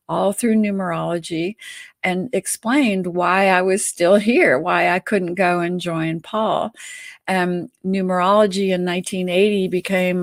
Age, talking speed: 50-69, 130 wpm